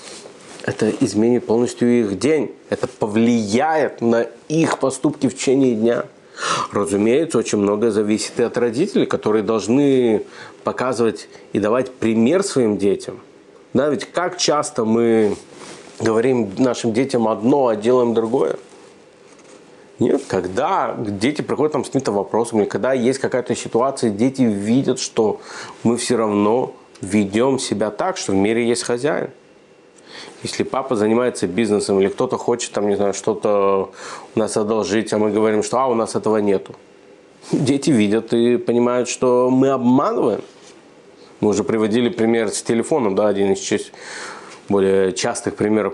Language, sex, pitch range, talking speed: Russian, male, 105-120 Hz, 140 wpm